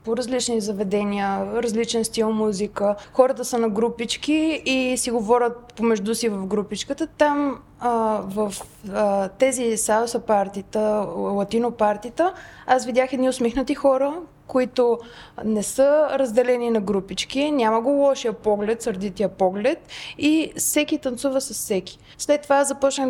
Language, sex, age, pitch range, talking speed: Bulgarian, female, 20-39, 220-270 Hz, 130 wpm